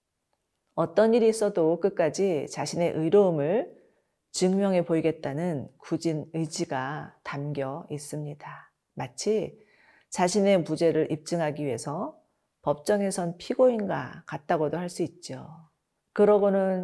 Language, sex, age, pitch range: Korean, female, 40-59, 155-200 Hz